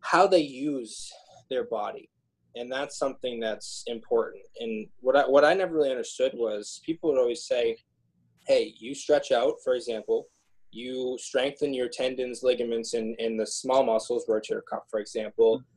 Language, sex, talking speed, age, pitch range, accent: English, male, 170 wpm, 20-39, 110-170 Hz, American